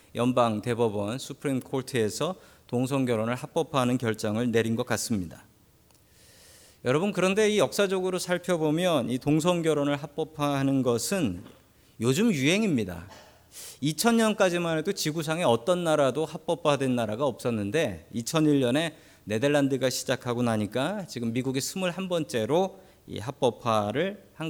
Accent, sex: native, male